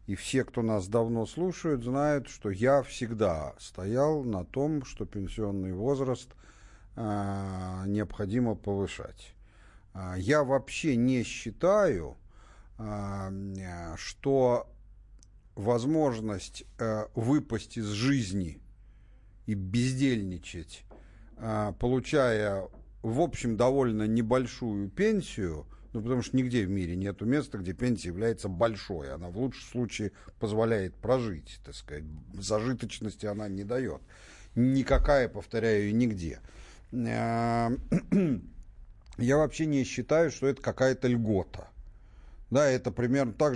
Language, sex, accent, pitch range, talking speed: Russian, male, native, 100-125 Hz, 105 wpm